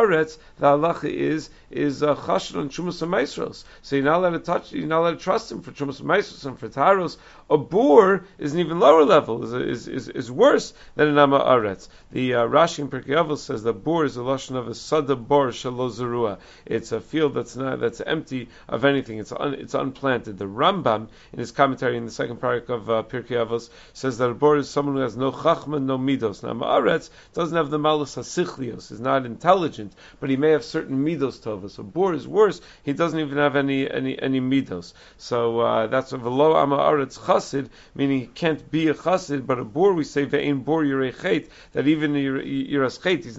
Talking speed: 190 wpm